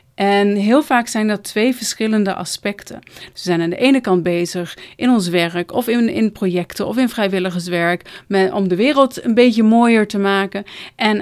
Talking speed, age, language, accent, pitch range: 180 wpm, 30-49, Dutch, Dutch, 190-230 Hz